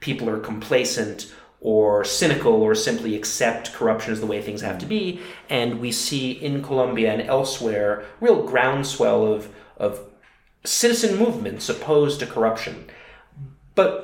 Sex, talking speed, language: male, 140 wpm, English